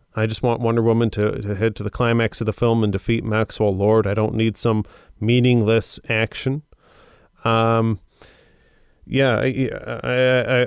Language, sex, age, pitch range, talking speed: English, male, 30-49, 110-125 Hz, 150 wpm